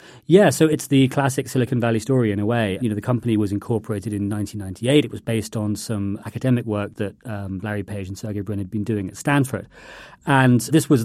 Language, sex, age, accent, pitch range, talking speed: English, male, 40-59, British, 105-125 Hz, 225 wpm